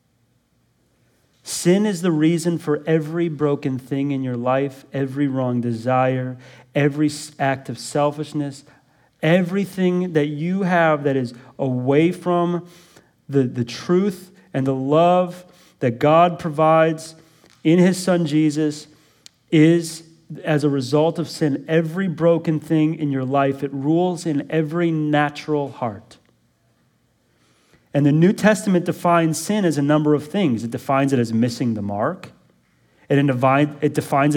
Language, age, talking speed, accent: English, 30-49, 135 wpm, American